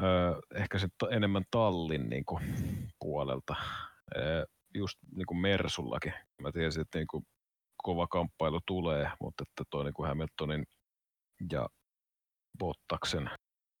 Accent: native